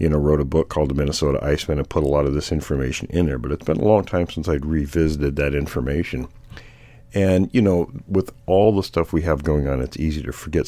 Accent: American